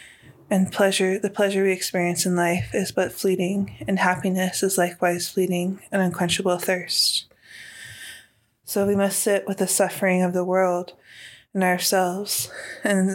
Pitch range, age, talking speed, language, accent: 180-195 Hz, 20-39, 145 wpm, English, American